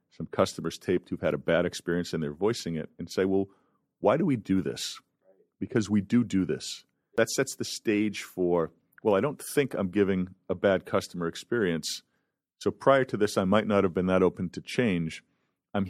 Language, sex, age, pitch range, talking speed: English, male, 40-59, 85-100 Hz, 205 wpm